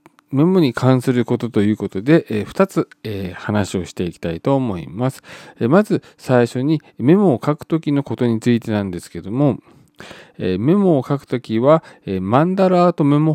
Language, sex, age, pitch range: Japanese, male, 40-59, 105-160 Hz